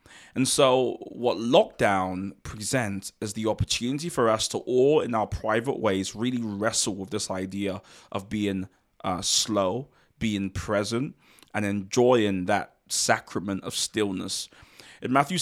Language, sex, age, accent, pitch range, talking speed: English, male, 20-39, British, 105-125 Hz, 135 wpm